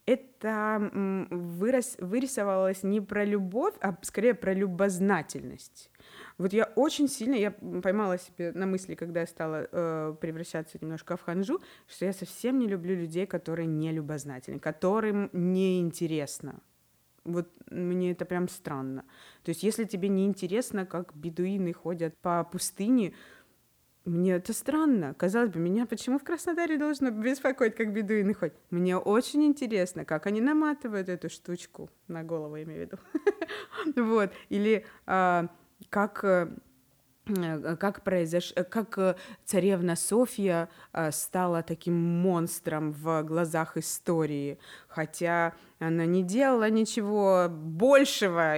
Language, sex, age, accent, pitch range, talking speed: Russian, female, 20-39, native, 165-215 Hz, 120 wpm